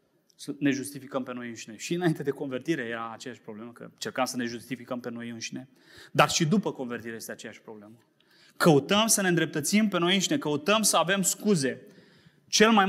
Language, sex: Romanian, male